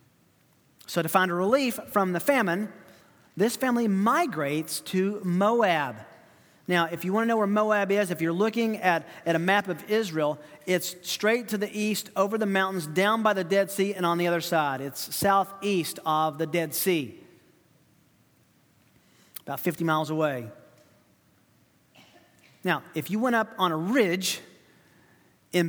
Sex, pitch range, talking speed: male, 160-200 Hz, 160 wpm